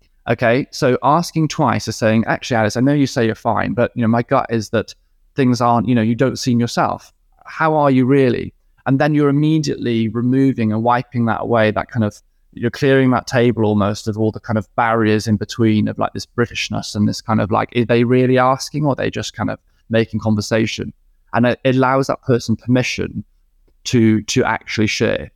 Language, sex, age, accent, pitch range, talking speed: English, male, 20-39, British, 110-125 Hz, 210 wpm